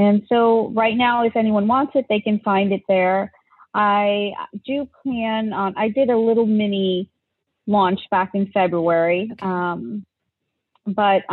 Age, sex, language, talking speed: 30-49, female, English, 150 wpm